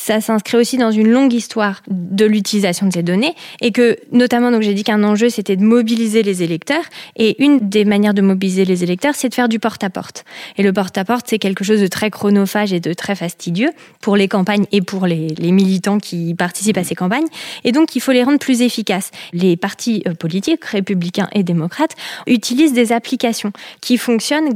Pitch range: 190-245 Hz